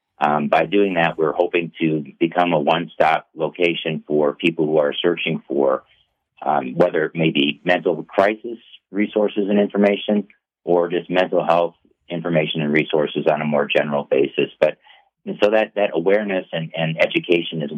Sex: male